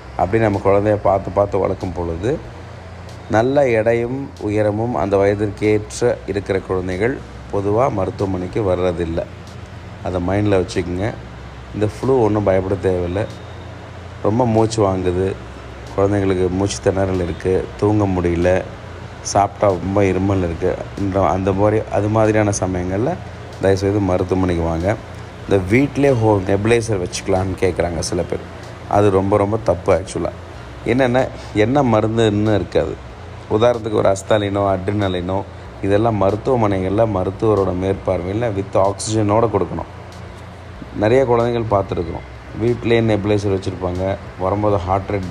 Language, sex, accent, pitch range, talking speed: Tamil, male, native, 95-105 Hz, 110 wpm